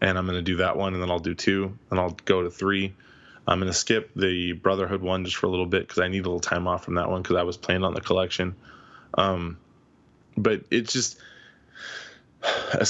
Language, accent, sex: English, American, male